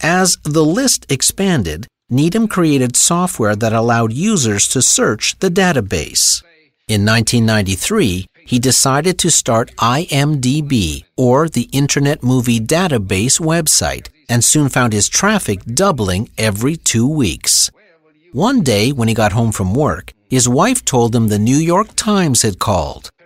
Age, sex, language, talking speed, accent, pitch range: 50-69, male, English, 140 wpm, American, 110-155 Hz